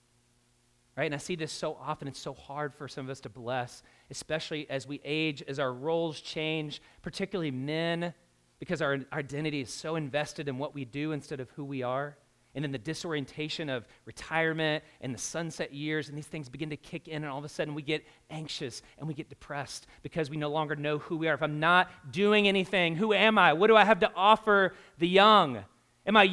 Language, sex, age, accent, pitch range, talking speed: English, male, 30-49, American, 150-225 Hz, 220 wpm